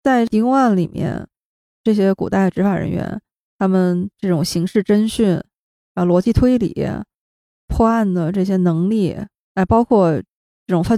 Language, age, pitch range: Chinese, 20-39, 175-215 Hz